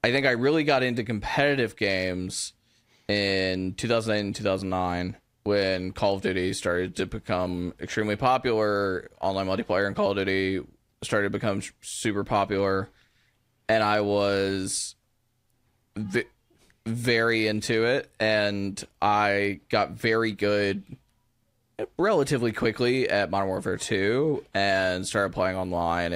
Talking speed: 125 wpm